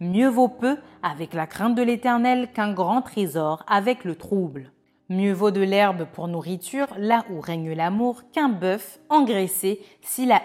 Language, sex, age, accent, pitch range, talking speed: French, female, 30-49, French, 170-235 Hz, 165 wpm